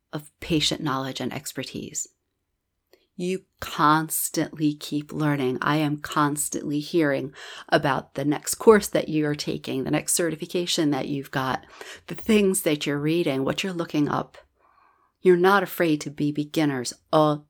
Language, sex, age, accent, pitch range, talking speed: English, female, 50-69, American, 140-165 Hz, 145 wpm